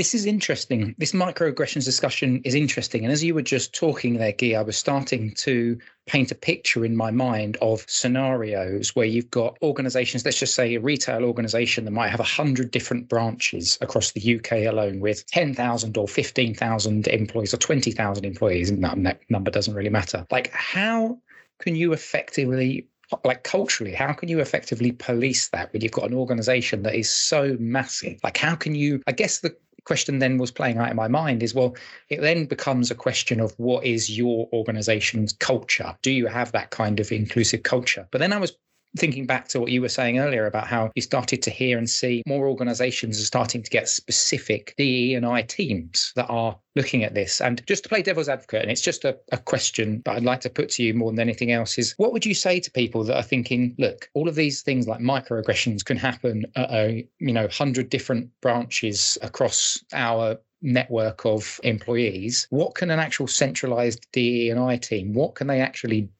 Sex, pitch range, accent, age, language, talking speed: male, 115-135 Hz, British, 20-39, English, 200 wpm